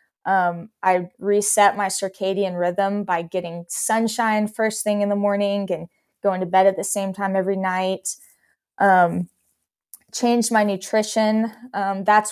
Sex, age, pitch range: female, 20-39, 185-205 Hz